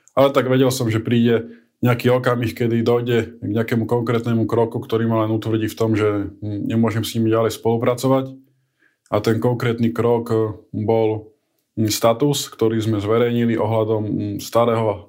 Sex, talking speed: male, 145 wpm